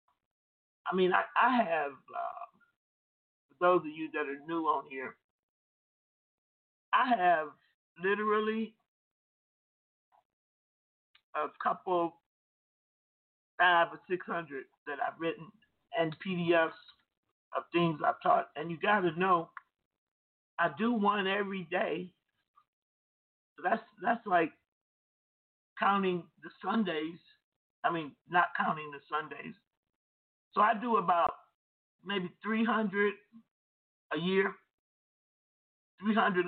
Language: English